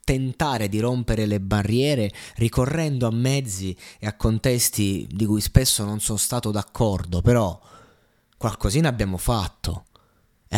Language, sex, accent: Italian, male, native